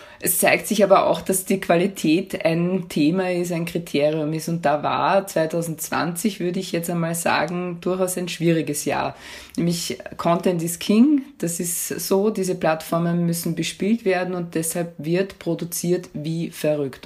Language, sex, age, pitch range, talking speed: German, female, 20-39, 155-185 Hz, 160 wpm